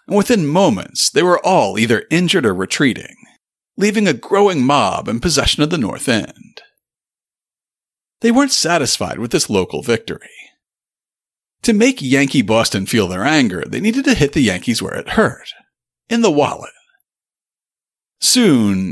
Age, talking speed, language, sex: 40-59, 150 wpm, English, male